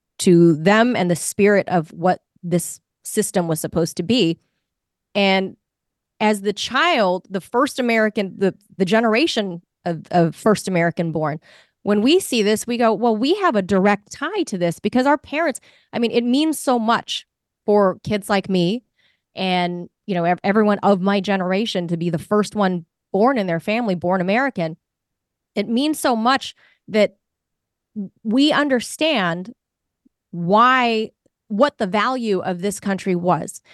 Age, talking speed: 30-49, 155 wpm